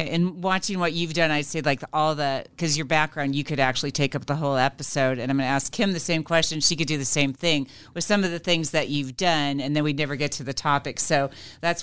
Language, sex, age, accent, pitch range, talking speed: English, female, 40-59, American, 140-170 Hz, 275 wpm